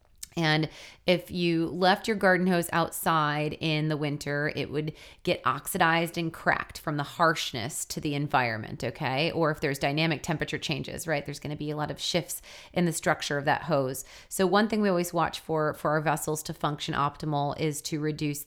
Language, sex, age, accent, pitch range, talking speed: English, female, 30-49, American, 150-175 Hz, 200 wpm